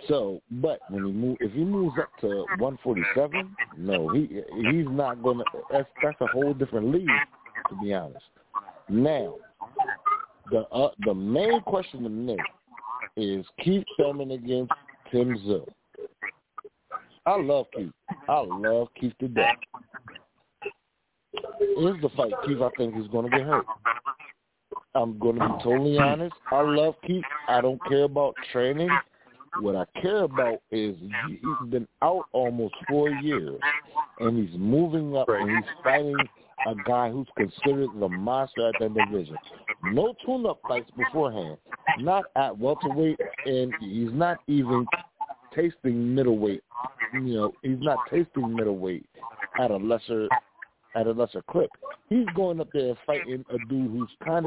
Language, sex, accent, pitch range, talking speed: English, male, American, 120-165 Hz, 145 wpm